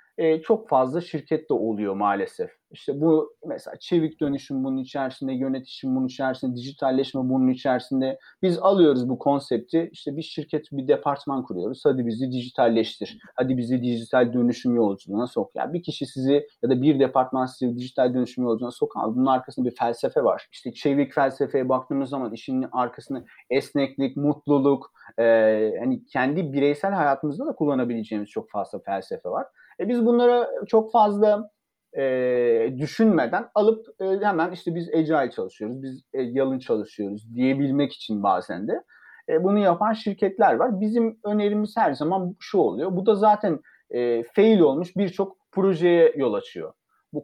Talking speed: 155 wpm